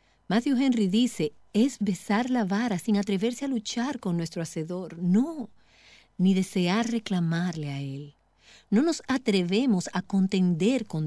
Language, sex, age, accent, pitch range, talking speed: Spanish, female, 40-59, American, 165-230 Hz, 140 wpm